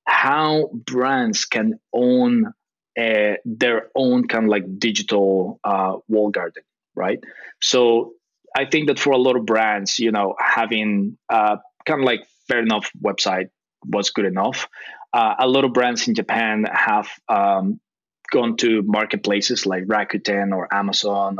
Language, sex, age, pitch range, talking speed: English, male, 20-39, 105-135 Hz, 145 wpm